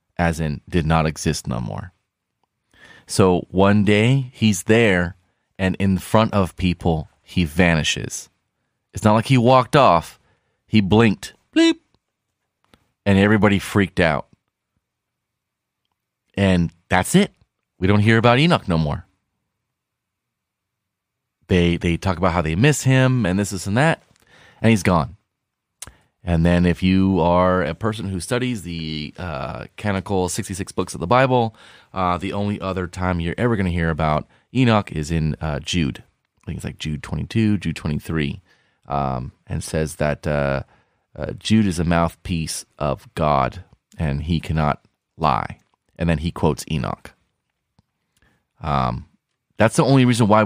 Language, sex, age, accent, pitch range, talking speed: English, male, 30-49, American, 85-110 Hz, 150 wpm